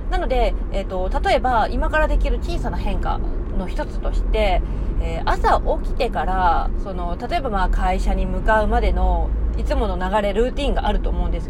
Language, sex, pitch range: Japanese, female, 200-310 Hz